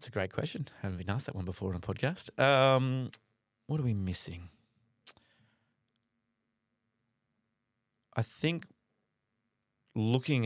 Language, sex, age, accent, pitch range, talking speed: English, male, 30-49, Australian, 95-115 Hz, 125 wpm